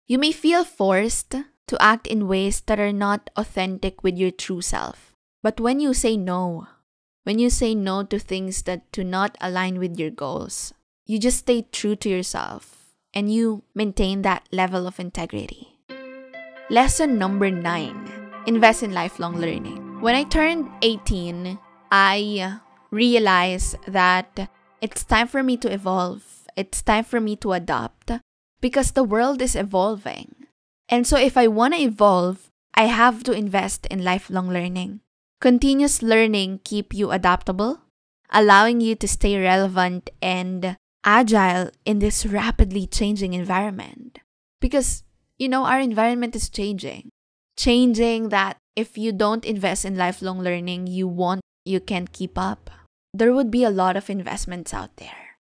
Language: English